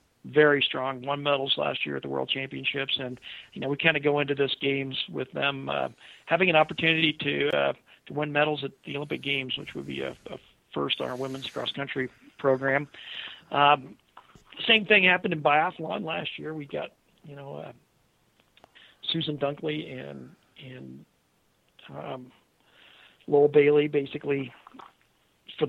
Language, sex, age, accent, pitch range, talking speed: English, male, 50-69, American, 130-155 Hz, 160 wpm